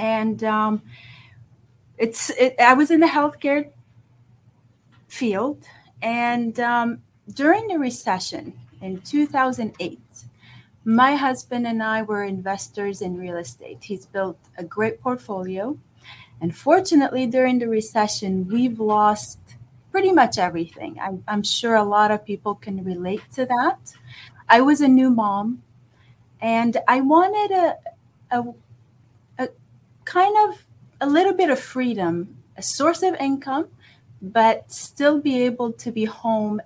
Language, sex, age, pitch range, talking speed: English, female, 30-49, 175-255 Hz, 130 wpm